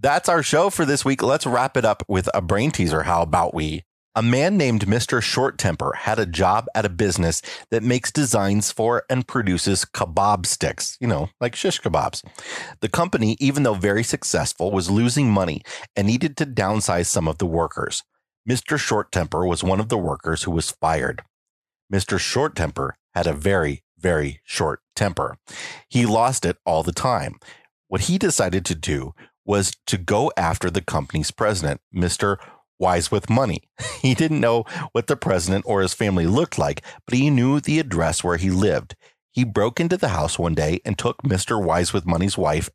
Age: 30-49